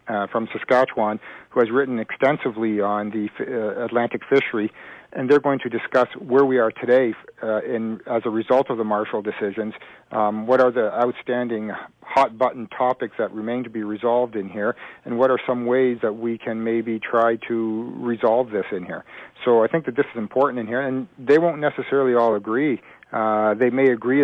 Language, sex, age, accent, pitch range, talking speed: English, male, 50-69, American, 110-130 Hz, 195 wpm